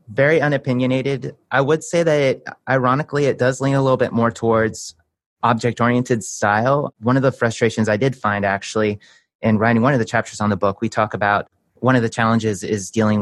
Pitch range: 105-125 Hz